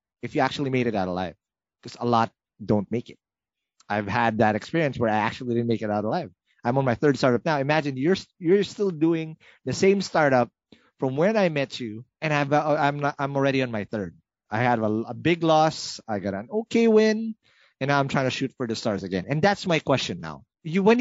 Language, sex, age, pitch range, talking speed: English, male, 30-49, 110-155 Hz, 225 wpm